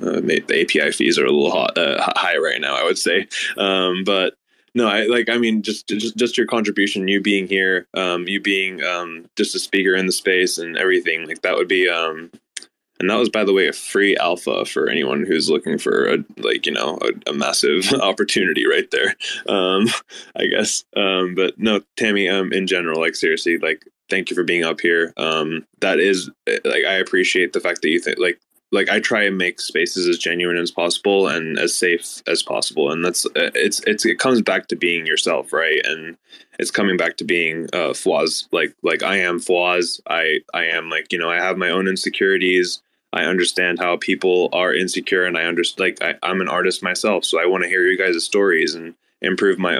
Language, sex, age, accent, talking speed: English, male, 10-29, American, 215 wpm